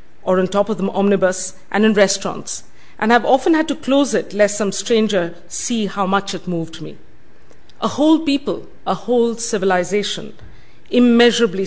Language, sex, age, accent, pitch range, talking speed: English, female, 50-69, Indian, 180-225 Hz, 165 wpm